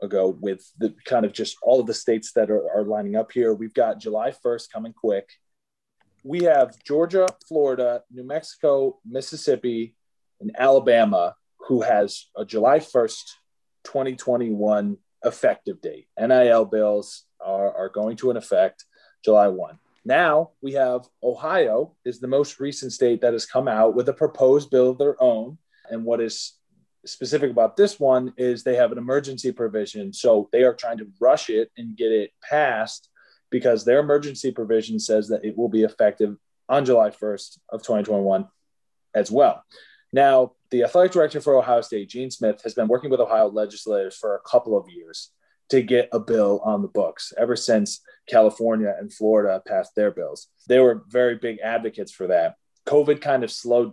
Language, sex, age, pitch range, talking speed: English, male, 30-49, 110-150 Hz, 175 wpm